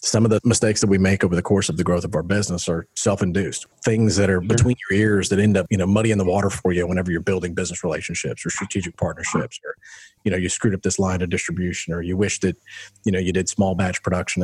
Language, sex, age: English, male, 40-59